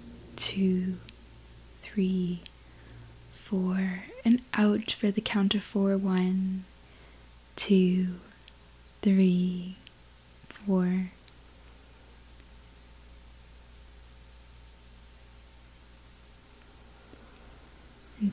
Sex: female